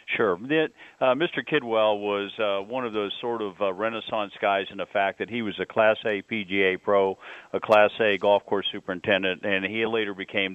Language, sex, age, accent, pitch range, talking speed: English, male, 50-69, American, 95-110 Hz, 200 wpm